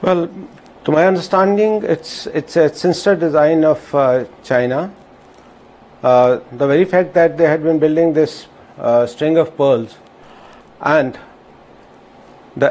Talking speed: 130 wpm